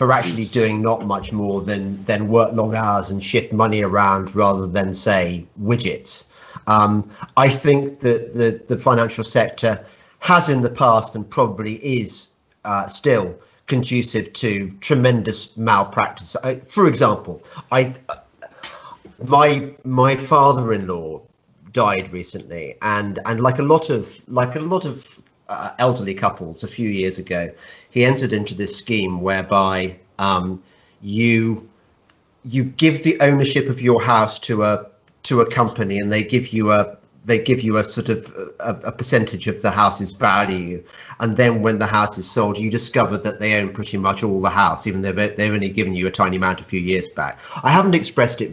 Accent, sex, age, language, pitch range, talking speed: British, male, 40-59, English, 100-130 Hz, 175 wpm